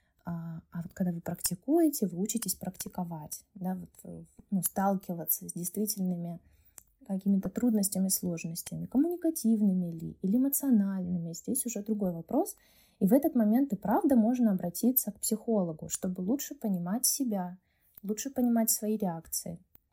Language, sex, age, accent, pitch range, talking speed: Russian, female, 20-39, native, 180-225 Hz, 130 wpm